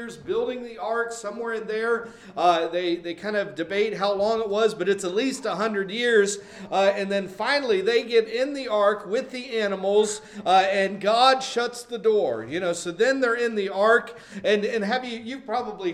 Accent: American